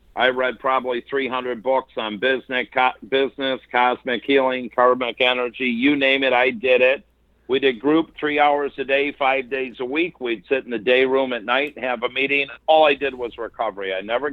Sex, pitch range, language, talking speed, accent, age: male, 125-145 Hz, English, 200 wpm, American, 50-69